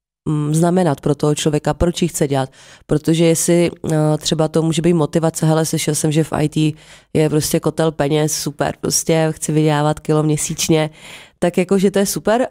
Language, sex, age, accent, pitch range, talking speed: English, female, 30-49, Czech, 155-175 Hz, 170 wpm